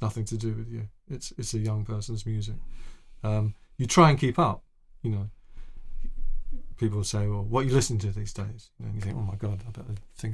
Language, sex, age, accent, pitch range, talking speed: English, male, 40-59, British, 110-125 Hz, 220 wpm